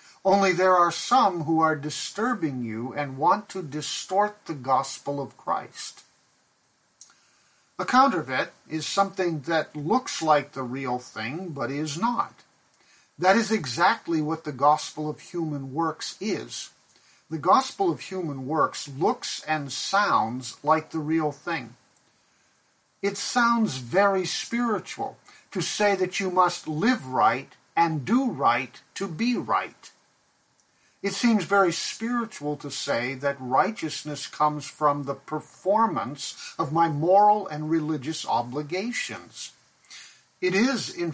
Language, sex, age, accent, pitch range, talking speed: English, male, 50-69, American, 150-200 Hz, 130 wpm